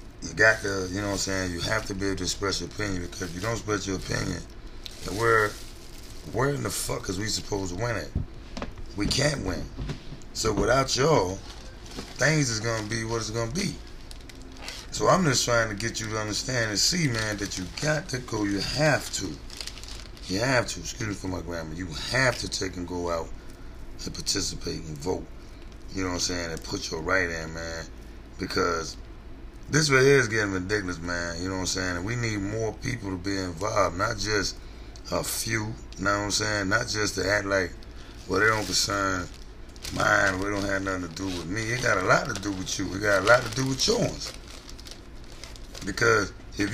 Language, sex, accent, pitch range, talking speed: English, male, American, 95-115 Hz, 215 wpm